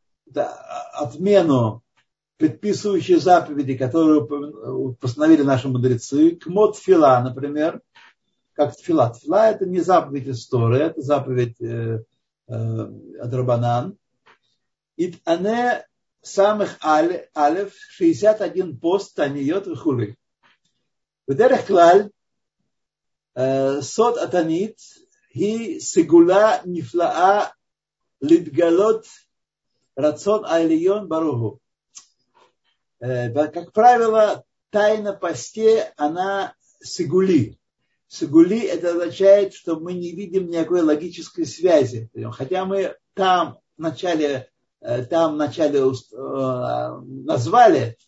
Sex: male